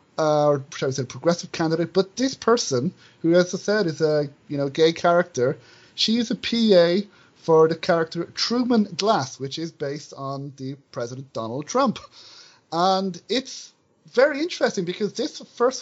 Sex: male